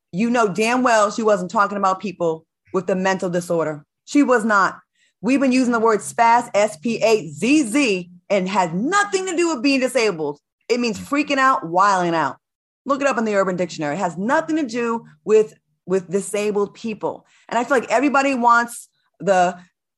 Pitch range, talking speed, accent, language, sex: 185-245 Hz, 180 wpm, American, English, female